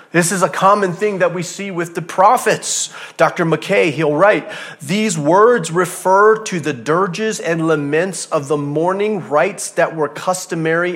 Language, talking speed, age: English, 165 wpm, 30-49